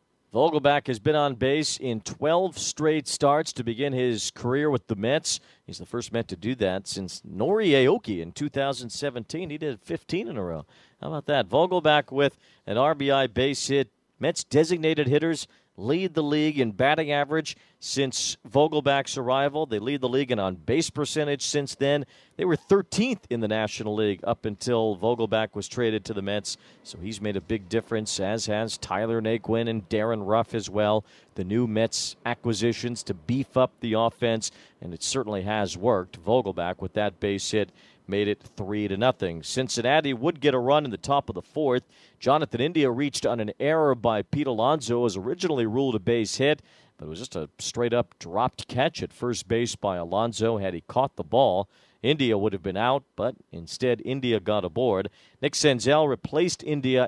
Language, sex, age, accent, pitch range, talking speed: English, male, 50-69, American, 110-145 Hz, 185 wpm